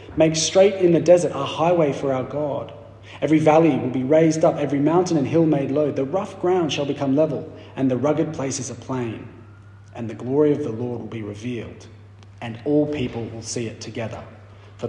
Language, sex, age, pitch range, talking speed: English, male, 30-49, 105-150 Hz, 205 wpm